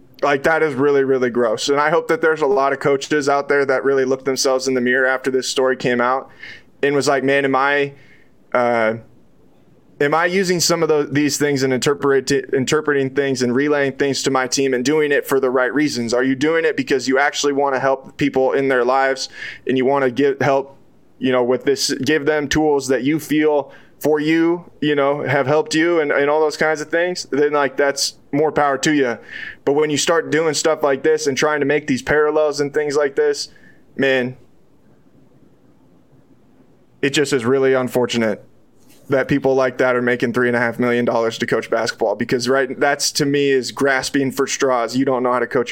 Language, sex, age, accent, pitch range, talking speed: English, male, 20-39, American, 130-145 Hz, 215 wpm